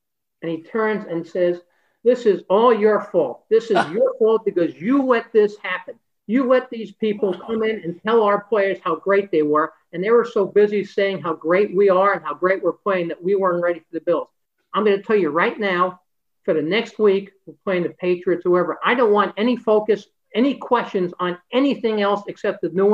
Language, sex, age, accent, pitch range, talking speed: English, male, 50-69, American, 175-215 Hz, 220 wpm